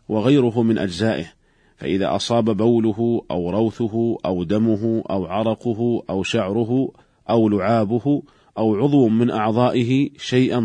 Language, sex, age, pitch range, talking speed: Arabic, male, 40-59, 105-120 Hz, 120 wpm